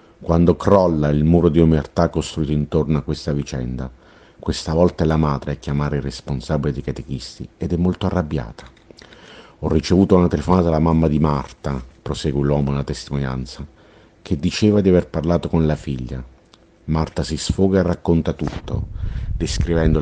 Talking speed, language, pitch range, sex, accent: 160 wpm, Italian, 70-85 Hz, male, native